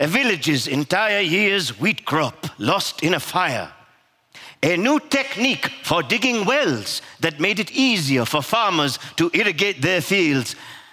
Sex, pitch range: male, 145-205 Hz